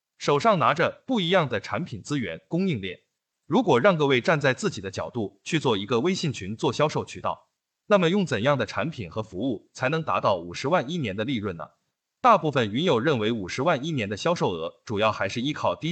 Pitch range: 115-180 Hz